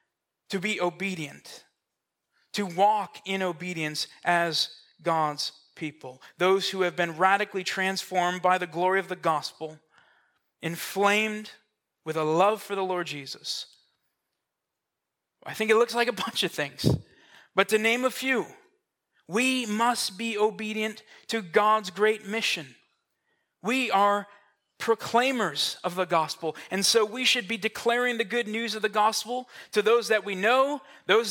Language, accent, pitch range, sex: English, American, 185-230 Hz, male